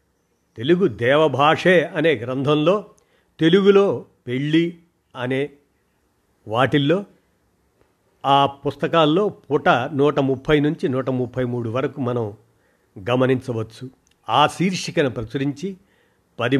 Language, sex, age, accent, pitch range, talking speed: Telugu, male, 50-69, native, 120-150 Hz, 85 wpm